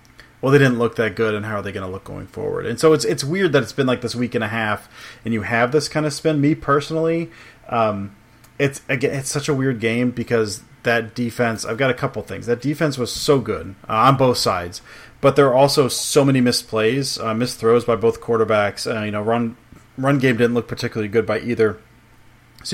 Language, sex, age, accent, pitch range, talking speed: English, male, 30-49, American, 115-140 Hz, 230 wpm